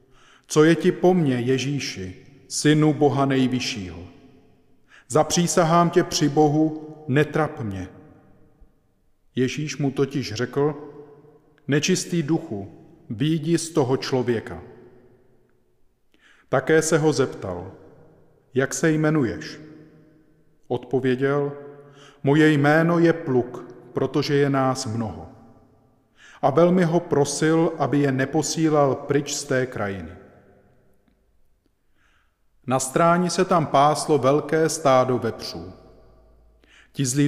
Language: Czech